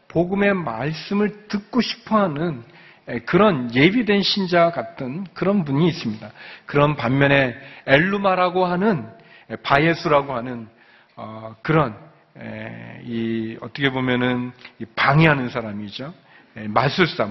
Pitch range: 120-175 Hz